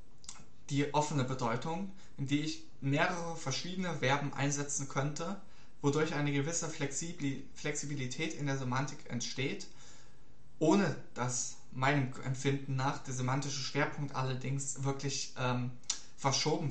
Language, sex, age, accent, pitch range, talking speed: German, male, 20-39, German, 135-160 Hz, 110 wpm